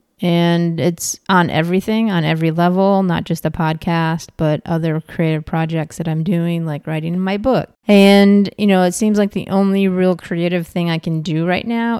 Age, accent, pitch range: 30-49, American, 160-190 Hz